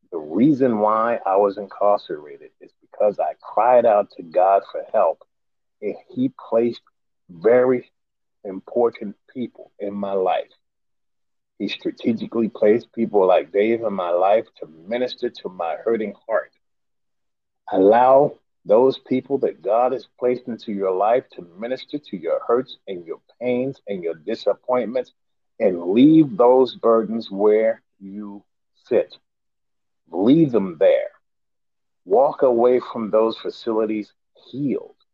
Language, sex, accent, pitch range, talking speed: English, male, American, 105-175 Hz, 130 wpm